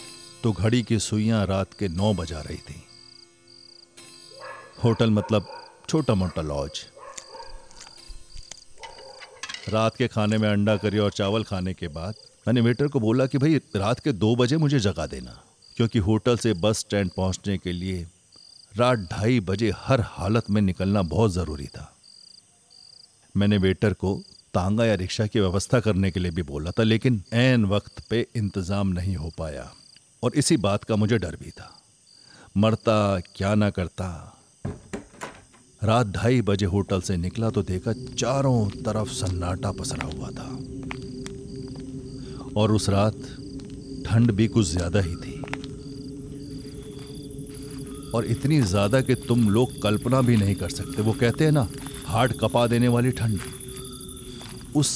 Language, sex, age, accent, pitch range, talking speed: Hindi, male, 50-69, native, 100-130 Hz, 145 wpm